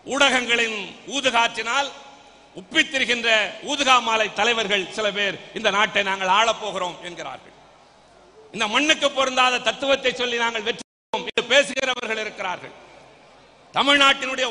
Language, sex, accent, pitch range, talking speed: Tamil, male, native, 225-270 Hz, 95 wpm